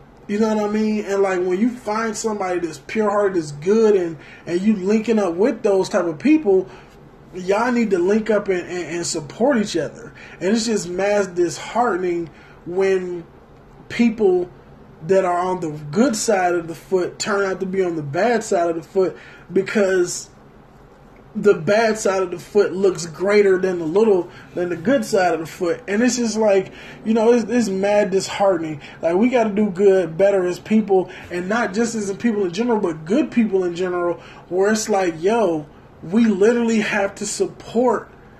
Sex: male